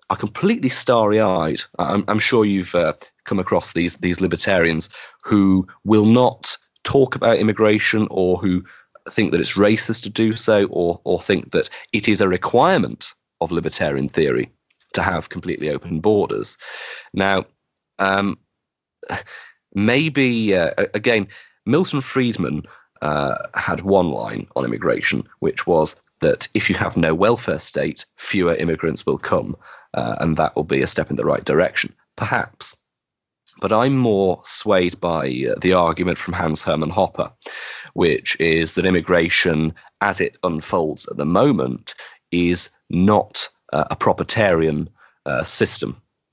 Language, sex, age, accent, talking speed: Swedish, male, 30-49, British, 140 wpm